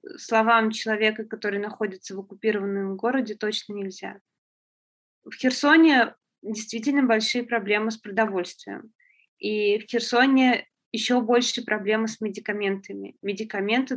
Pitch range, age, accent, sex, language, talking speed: 190-225 Hz, 20-39, native, female, Russian, 105 wpm